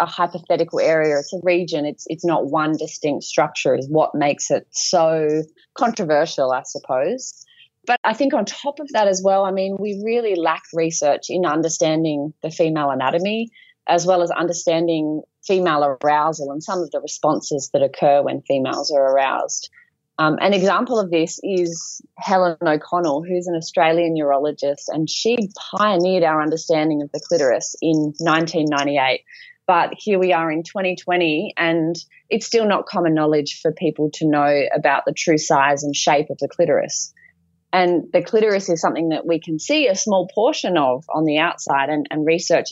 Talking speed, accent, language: 175 wpm, Australian, English